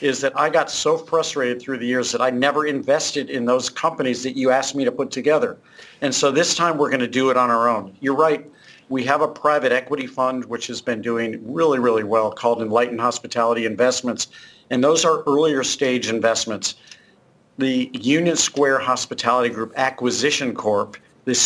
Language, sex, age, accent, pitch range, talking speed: English, male, 50-69, American, 120-155 Hz, 190 wpm